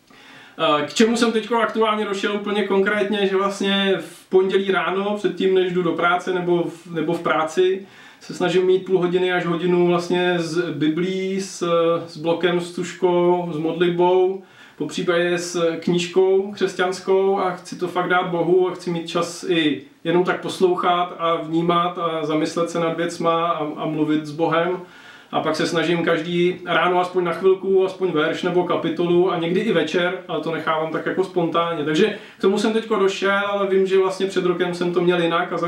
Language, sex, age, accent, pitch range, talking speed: Czech, male, 30-49, native, 165-185 Hz, 185 wpm